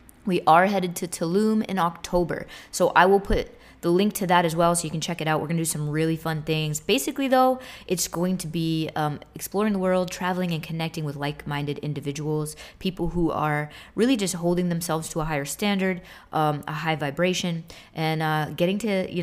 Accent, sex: American, female